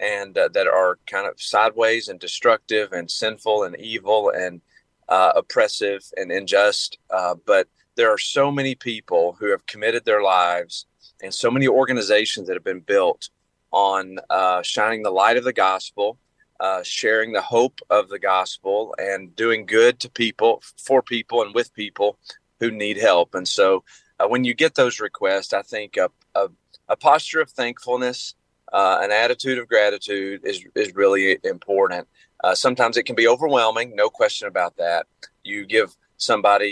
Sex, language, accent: male, English, American